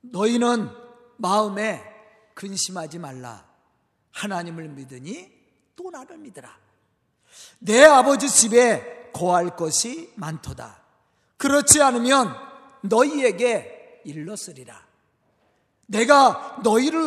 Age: 40-59